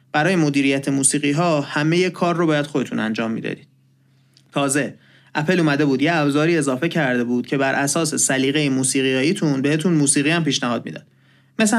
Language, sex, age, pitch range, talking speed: Persian, male, 30-49, 135-180 Hz, 170 wpm